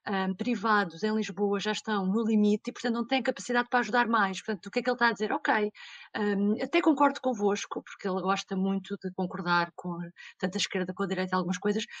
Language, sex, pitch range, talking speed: Portuguese, female, 190-240 Hz, 220 wpm